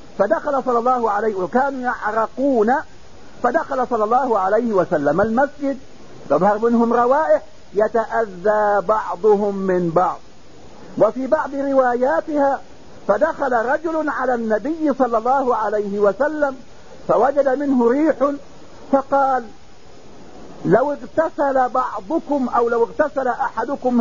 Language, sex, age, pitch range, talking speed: English, male, 50-69, 225-285 Hz, 100 wpm